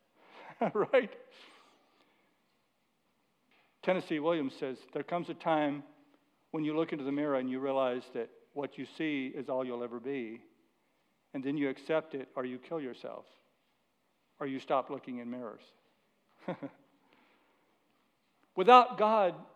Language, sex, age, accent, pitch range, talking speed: English, male, 60-79, American, 145-200 Hz, 130 wpm